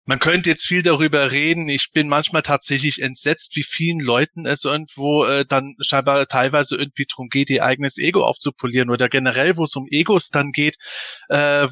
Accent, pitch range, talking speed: German, 130-165 Hz, 185 wpm